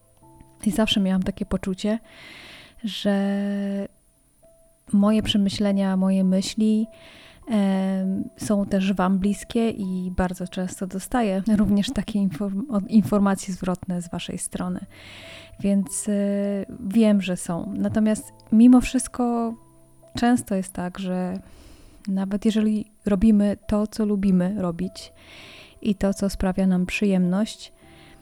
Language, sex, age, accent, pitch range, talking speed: Polish, female, 20-39, native, 190-215 Hz, 105 wpm